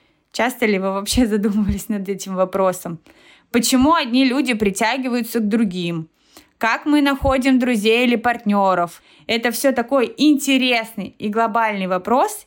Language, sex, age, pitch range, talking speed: Russian, female, 20-39, 200-255 Hz, 130 wpm